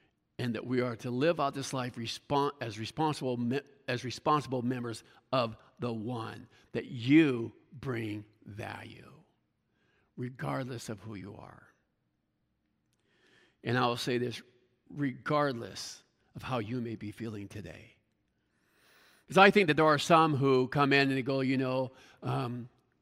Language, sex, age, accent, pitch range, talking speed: English, male, 50-69, American, 120-145 Hz, 145 wpm